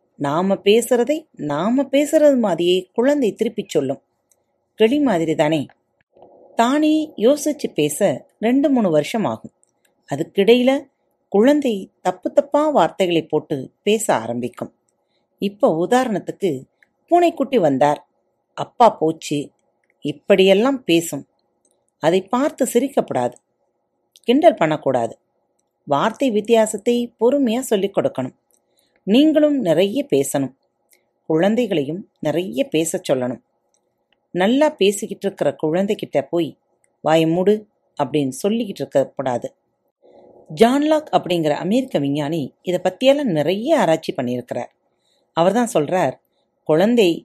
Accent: native